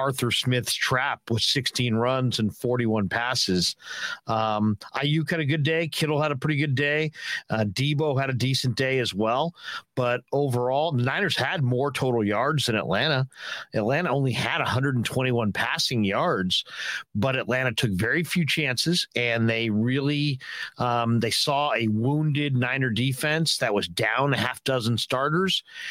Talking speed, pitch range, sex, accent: 160 wpm, 120-155 Hz, male, American